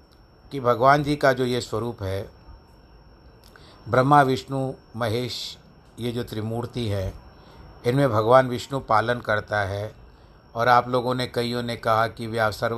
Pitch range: 105-135 Hz